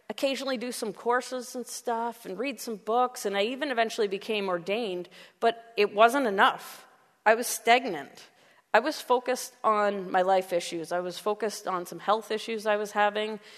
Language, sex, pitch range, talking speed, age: English, female, 195-245 Hz, 175 wpm, 30-49